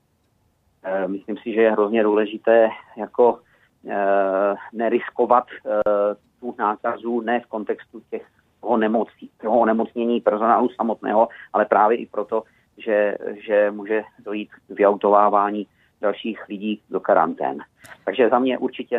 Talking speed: 125 wpm